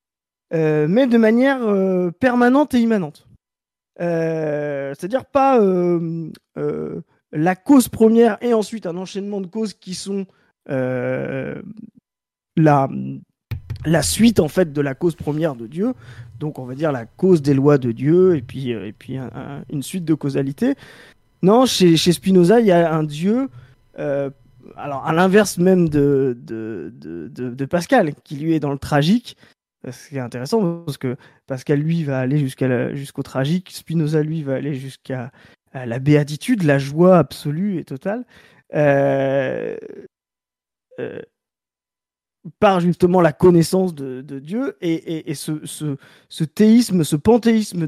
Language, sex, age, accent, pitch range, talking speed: French, male, 20-39, French, 140-200 Hz, 160 wpm